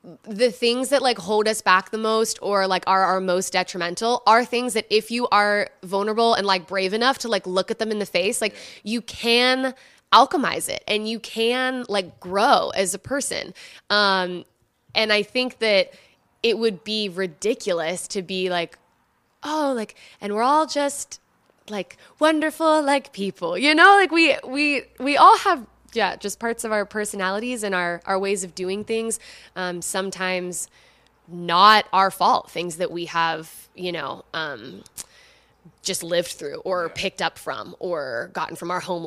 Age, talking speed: 20-39, 175 wpm